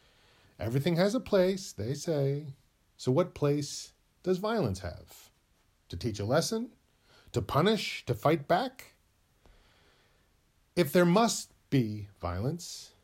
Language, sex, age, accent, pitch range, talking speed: English, male, 40-59, American, 110-170 Hz, 120 wpm